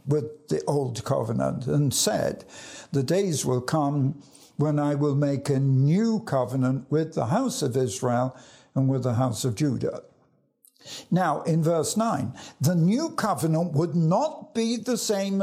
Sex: male